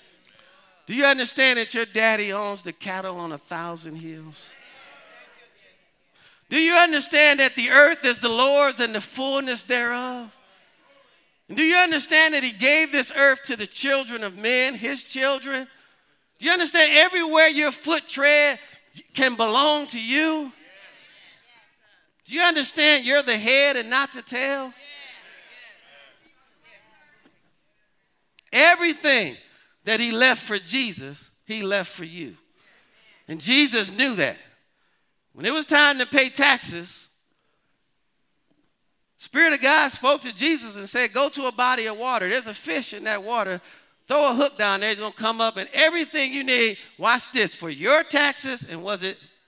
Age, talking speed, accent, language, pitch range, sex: 50-69, 155 wpm, American, English, 215-285 Hz, male